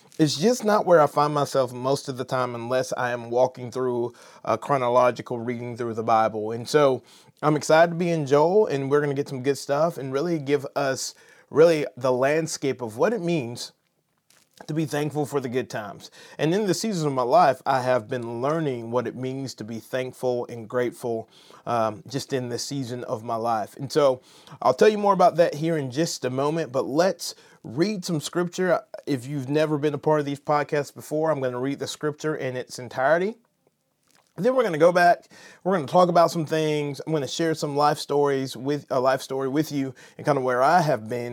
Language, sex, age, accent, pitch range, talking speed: English, male, 30-49, American, 125-155 Hz, 220 wpm